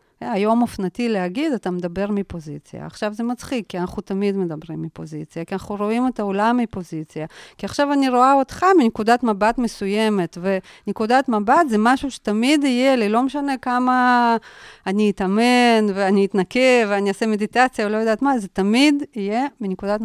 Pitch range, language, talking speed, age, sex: 185-250 Hz, Hebrew, 160 wpm, 40-59, female